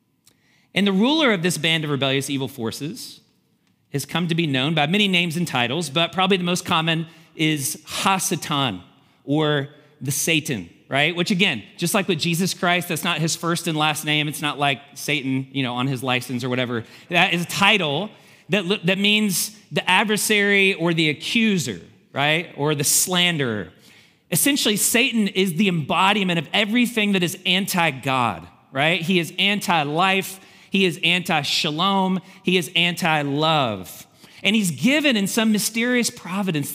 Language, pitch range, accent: English, 150-200 Hz, American